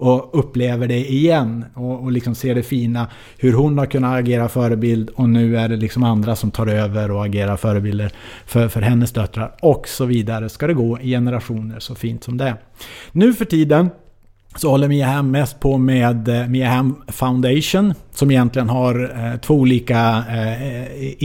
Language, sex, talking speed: English, male, 185 wpm